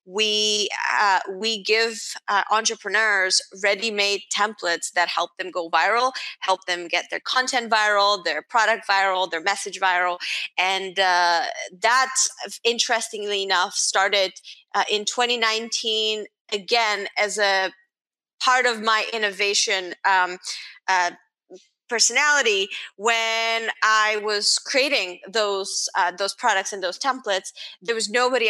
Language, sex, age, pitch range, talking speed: English, female, 30-49, 190-225 Hz, 120 wpm